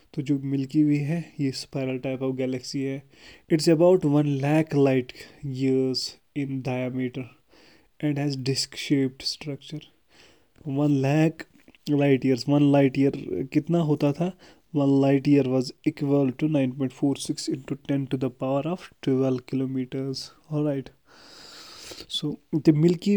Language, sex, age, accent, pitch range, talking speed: English, male, 20-39, Indian, 130-150 Hz, 135 wpm